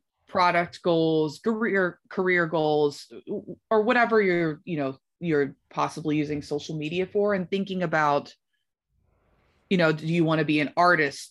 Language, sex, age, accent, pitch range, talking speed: English, female, 20-39, American, 145-180 Hz, 150 wpm